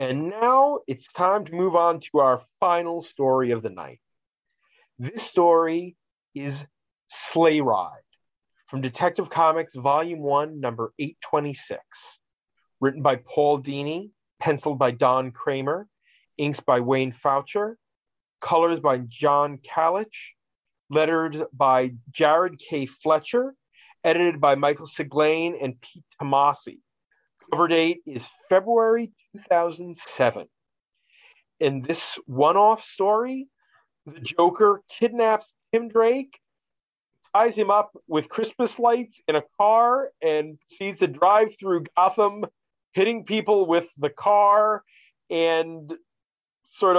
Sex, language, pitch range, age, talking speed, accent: male, English, 145-195 Hz, 40-59, 115 wpm, American